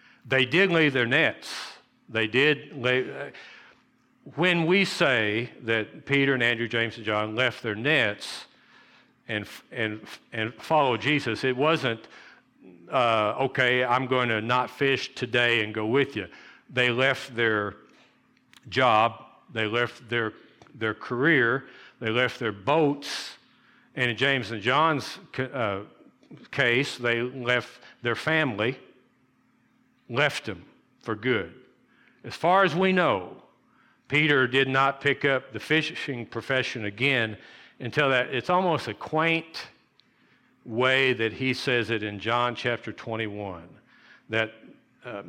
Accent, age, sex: American, 60-79, male